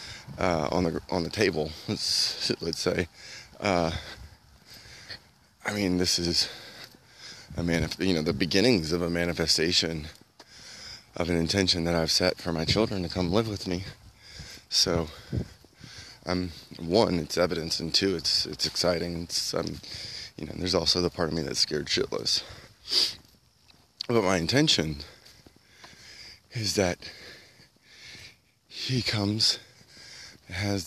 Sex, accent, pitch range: male, American, 80-105 Hz